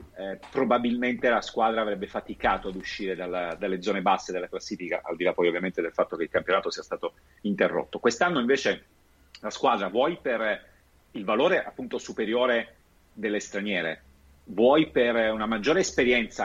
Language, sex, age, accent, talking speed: Italian, male, 40-59, native, 155 wpm